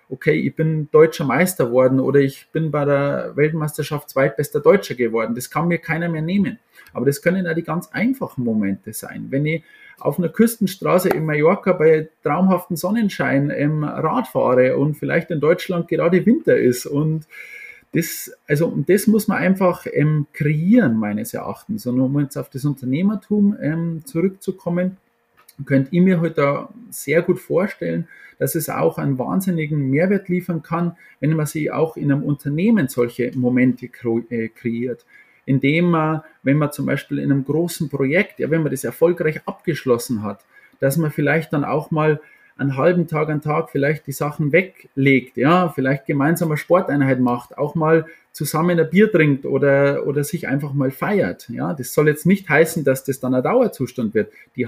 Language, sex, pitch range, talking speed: German, male, 140-180 Hz, 175 wpm